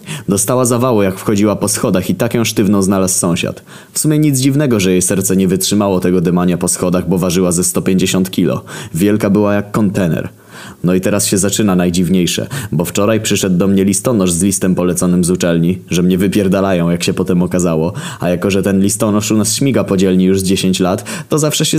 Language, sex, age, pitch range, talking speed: Polish, male, 20-39, 90-105 Hz, 205 wpm